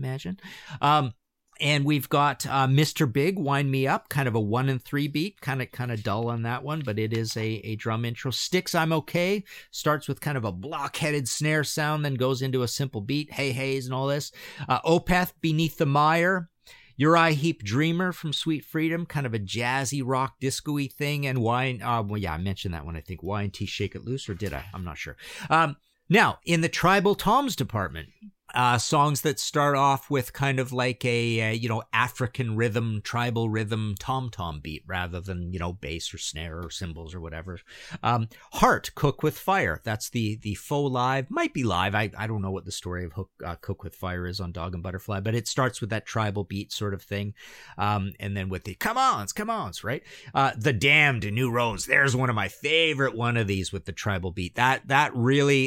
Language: English